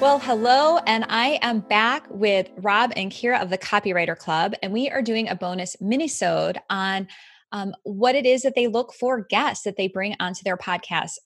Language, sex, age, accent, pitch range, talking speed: English, female, 20-39, American, 175-235 Hz, 195 wpm